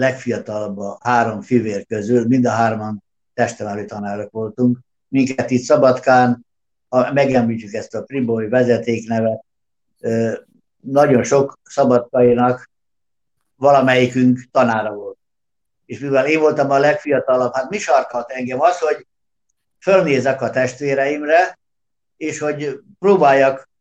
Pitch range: 120-145 Hz